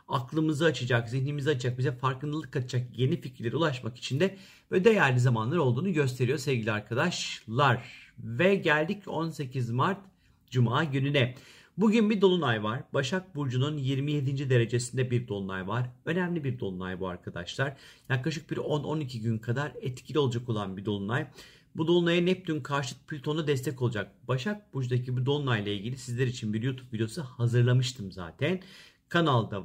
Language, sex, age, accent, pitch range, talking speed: Turkish, male, 50-69, native, 120-155 Hz, 145 wpm